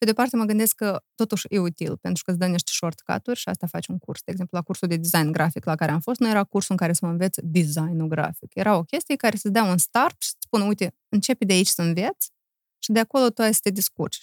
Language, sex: Romanian, female